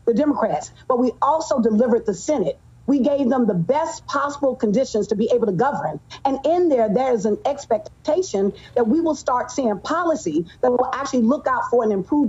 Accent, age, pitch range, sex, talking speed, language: American, 40-59, 240-300 Hz, female, 200 wpm, English